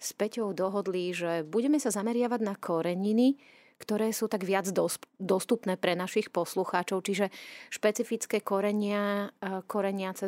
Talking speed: 130 wpm